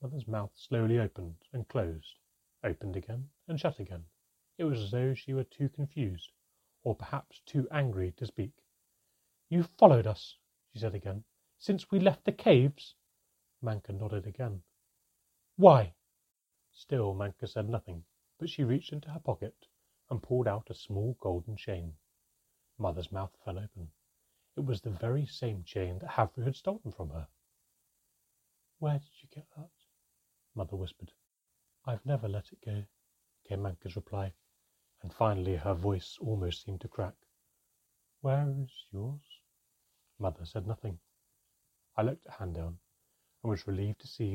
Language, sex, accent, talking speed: English, male, British, 150 wpm